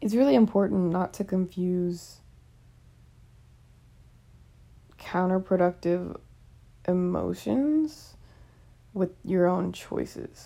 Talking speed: 70 wpm